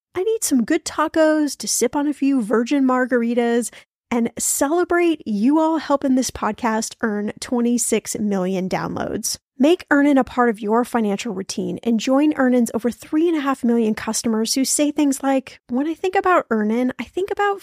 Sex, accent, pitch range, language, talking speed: female, American, 215-275 Hz, English, 180 wpm